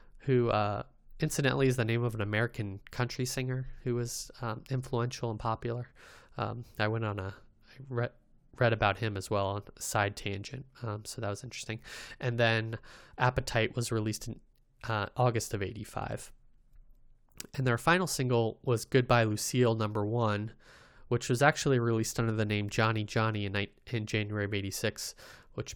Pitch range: 110-130 Hz